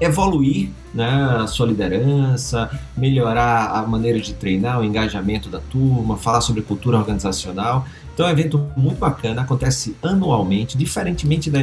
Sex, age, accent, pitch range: male, 40-59, Brazilian, 105-140 Hz